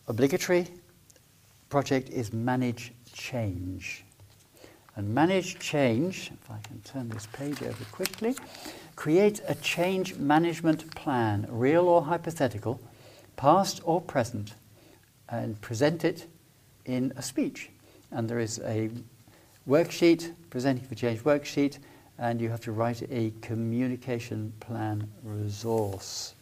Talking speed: 115 wpm